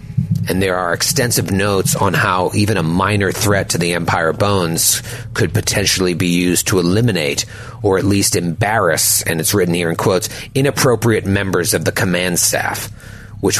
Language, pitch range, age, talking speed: English, 90-115 Hz, 40-59, 170 wpm